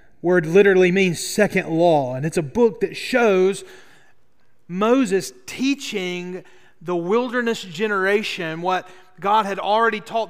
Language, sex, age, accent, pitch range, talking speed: English, male, 30-49, American, 160-210 Hz, 120 wpm